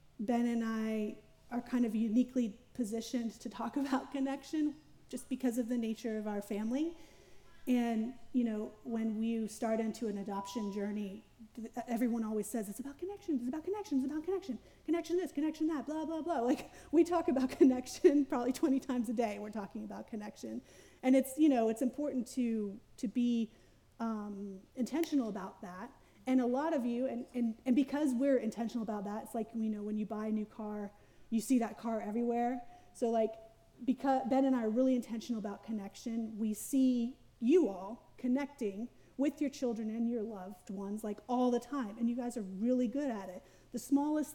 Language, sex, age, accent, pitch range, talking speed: English, female, 30-49, American, 220-265 Hz, 190 wpm